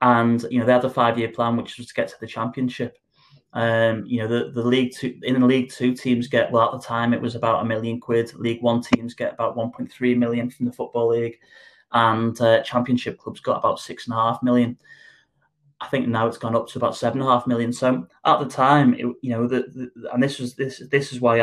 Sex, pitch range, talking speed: male, 115-125 Hz, 250 wpm